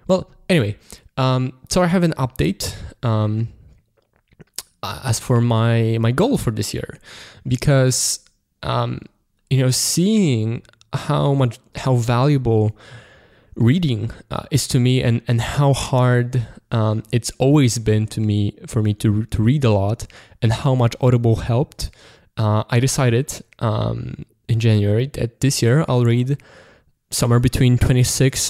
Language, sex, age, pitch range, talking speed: English, male, 20-39, 110-140 Hz, 140 wpm